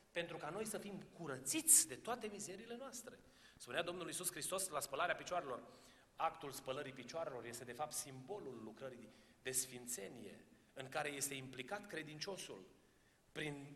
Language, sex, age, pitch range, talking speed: Romanian, male, 30-49, 130-180 Hz, 145 wpm